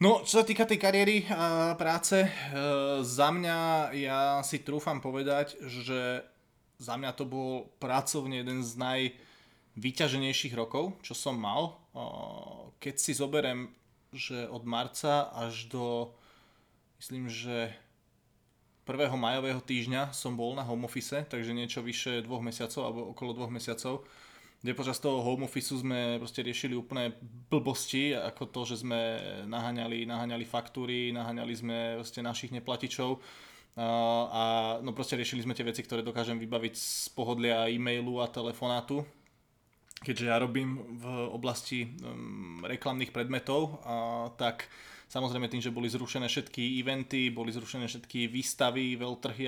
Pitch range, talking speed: 120-135 Hz, 140 wpm